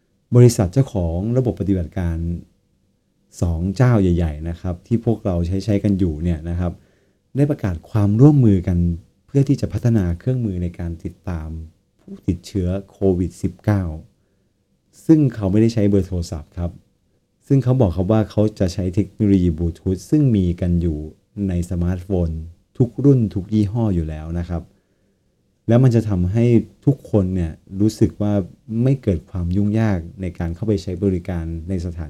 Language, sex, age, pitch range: Thai, male, 30-49, 85-110 Hz